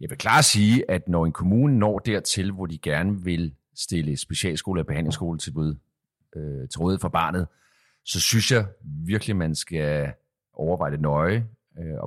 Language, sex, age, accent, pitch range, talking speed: Danish, male, 40-59, native, 95-125 Hz, 175 wpm